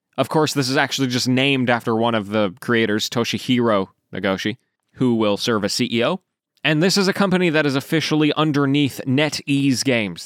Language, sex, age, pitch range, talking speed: English, male, 20-39, 115-160 Hz, 175 wpm